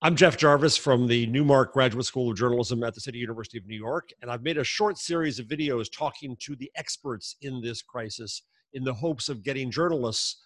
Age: 50-69